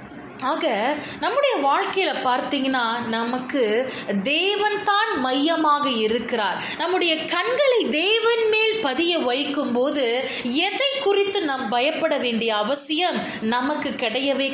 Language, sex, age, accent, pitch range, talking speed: Tamil, female, 20-39, native, 255-380 Hz, 90 wpm